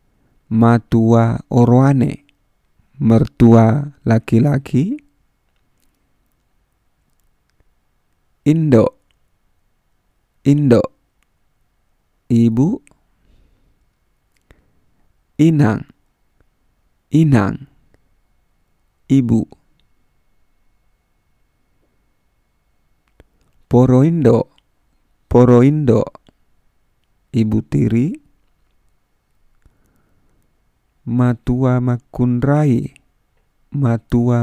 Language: Indonesian